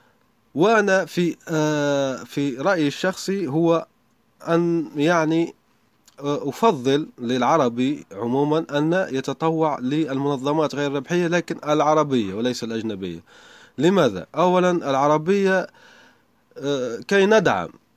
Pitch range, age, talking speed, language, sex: 115-155 Hz, 30-49, 85 wpm, Arabic, male